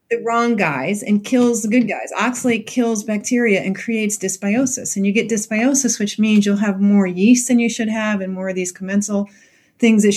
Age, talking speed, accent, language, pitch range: 40-59, 205 wpm, American, English, 175-220 Hz